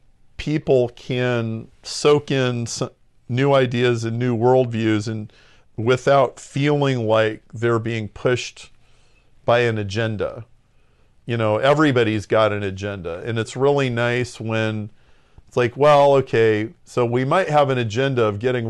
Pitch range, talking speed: 110-125 Hz, 130 wpm